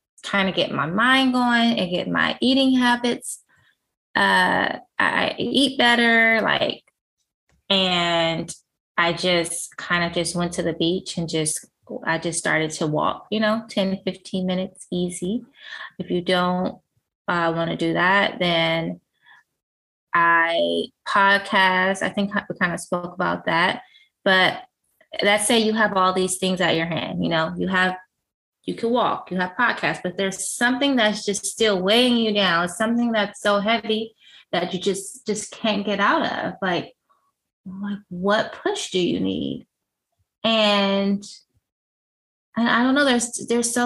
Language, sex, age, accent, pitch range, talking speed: English, female, 20-39, American, 180-225 Hz, 160 wpm